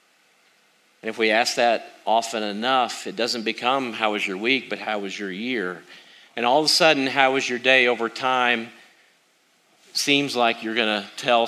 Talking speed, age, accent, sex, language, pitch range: 190 wpm, 40-59, American, male, English, 105-120 Hz